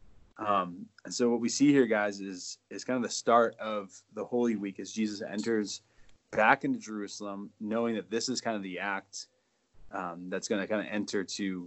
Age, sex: 20-39, male